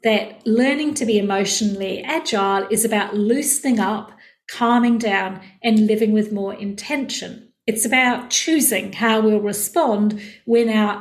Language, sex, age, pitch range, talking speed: English, female, 50-69, 210-260 Hz, 135 wpm